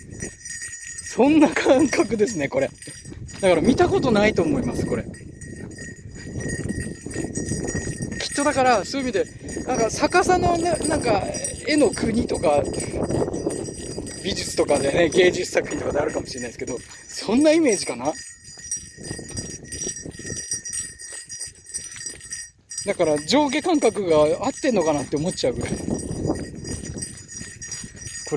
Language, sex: Japanese, male